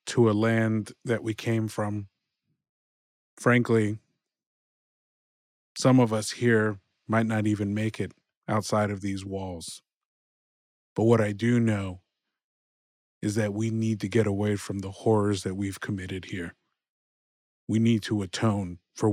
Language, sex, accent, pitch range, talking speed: English, male, American, 100-115 Hz, 140 wpm